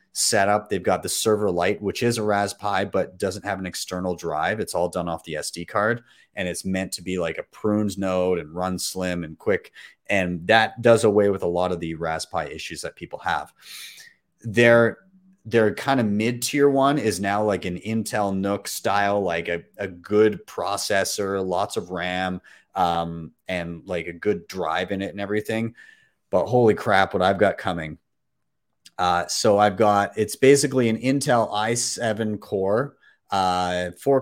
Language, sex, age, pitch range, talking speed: English, male, 30-49, 90-115 Hz, 180 wpm